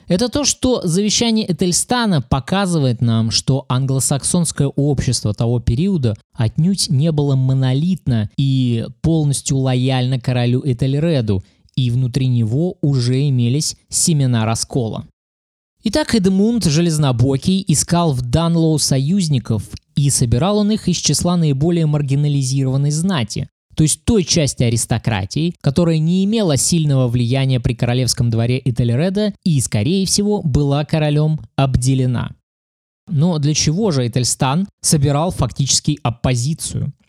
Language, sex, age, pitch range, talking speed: Russian, male, 20-39, 125-175 Hz, 115 wpm